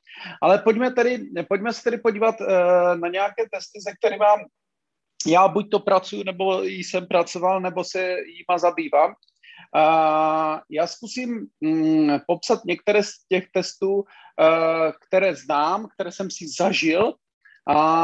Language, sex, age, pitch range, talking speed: Czech, male, 40-59, 150-195 Hz, 140 wpm